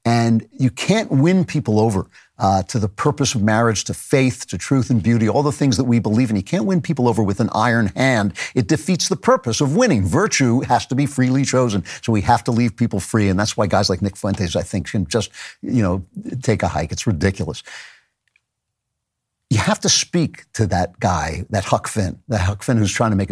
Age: 50-69